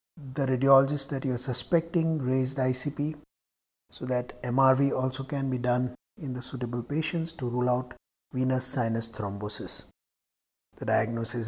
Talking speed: 140 wpm